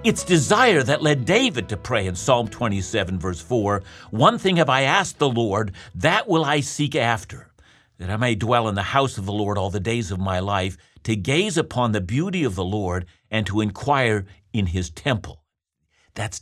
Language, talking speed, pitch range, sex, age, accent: English, 200 wpm, 100-150 Hz, male, 60-79, American